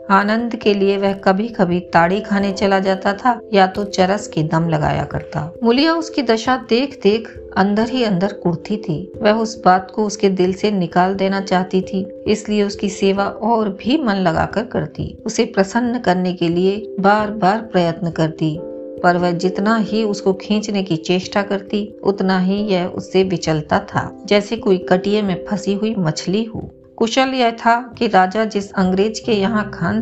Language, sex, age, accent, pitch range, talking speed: Hindi, female, 50-69, native, 180-220 Hz, 180 wpm